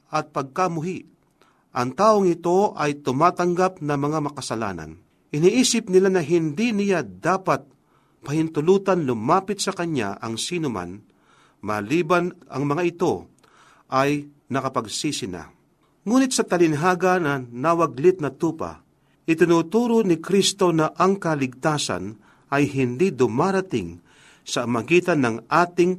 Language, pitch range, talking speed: Filipino, 130-180 Hz, 115 wpm